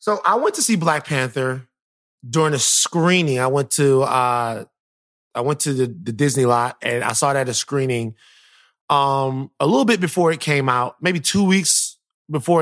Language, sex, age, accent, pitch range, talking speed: English, male, 20-39, American, 110-135 Hz, 185 wpm